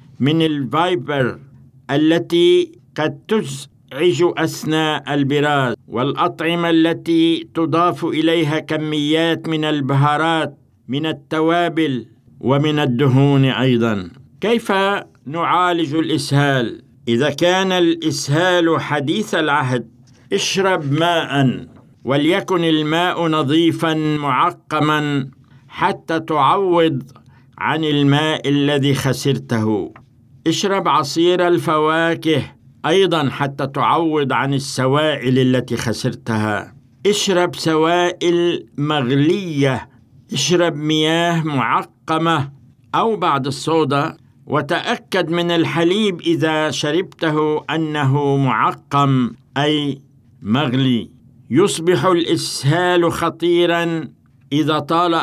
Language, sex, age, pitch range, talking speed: Arabic, male, 60-79, 135-165 Hz, 80 wpm